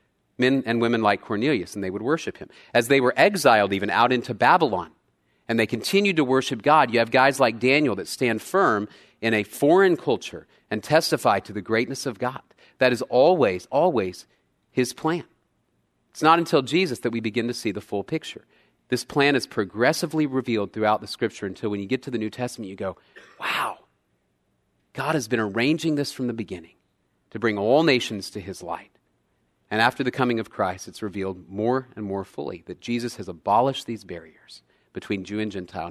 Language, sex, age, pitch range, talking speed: English, male, 40-59, 105-130 Hz, 195 wpm